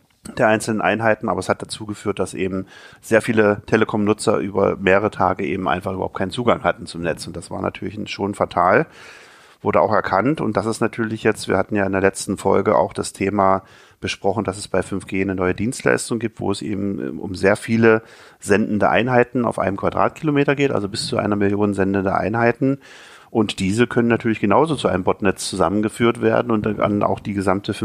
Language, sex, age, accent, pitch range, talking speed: German, male, 40-59, German, 95-110 Hz, 200 wpm